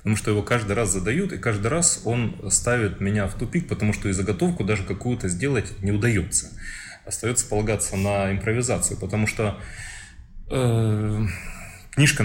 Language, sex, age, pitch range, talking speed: Russian, male, 30-49, 95-115 Hz, 150 wpm